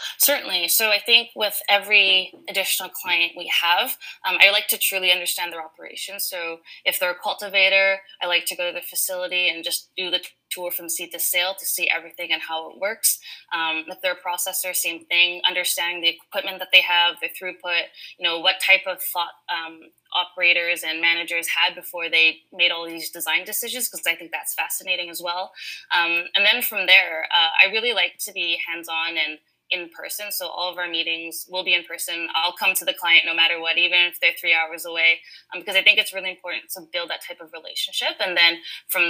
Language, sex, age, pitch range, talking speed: English, female, 20-39, 170-185 Hz, 215 wpm